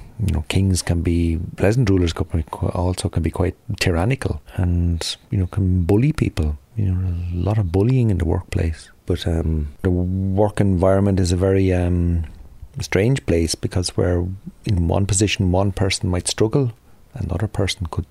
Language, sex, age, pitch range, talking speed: English, male, 40-59, 85-100 Hz, 170 wpm